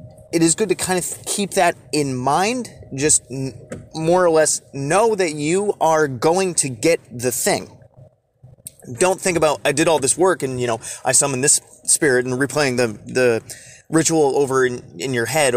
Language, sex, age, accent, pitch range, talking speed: English, male, 30-49, American, 125-150 Hz, 185 wpm